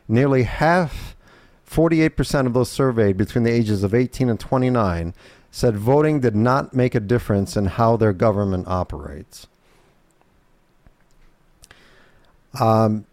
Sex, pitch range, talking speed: male, 100-130 Hz, 125 wpm